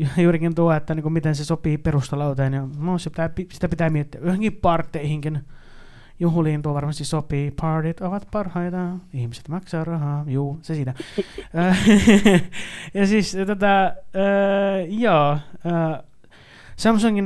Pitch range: 150-180 Hz